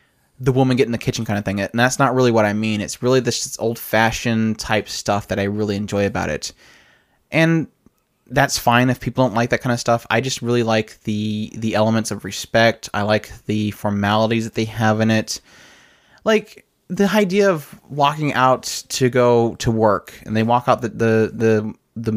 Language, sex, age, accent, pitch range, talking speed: English, male, 20-39, American, 105-120 Hz, 205 wpm